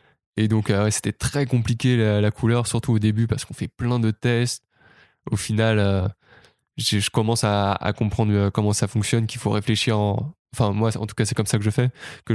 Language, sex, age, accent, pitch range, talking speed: French, male, 20-39, French, 105-120 Hz, 225 wpm